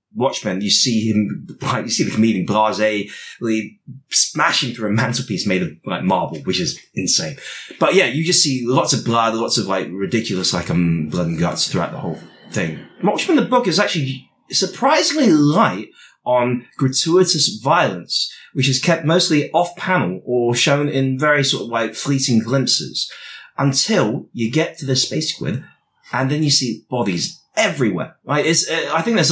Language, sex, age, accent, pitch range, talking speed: English, male, 30-49, British, 110-160 Hz, 175 wpm